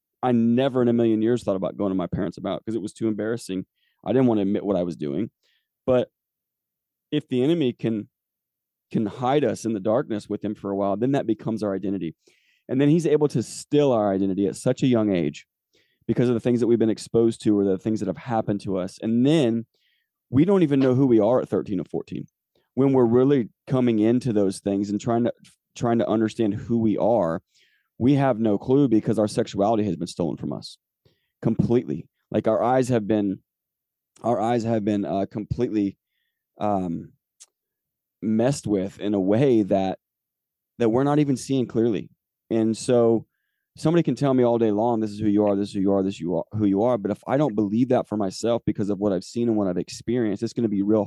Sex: male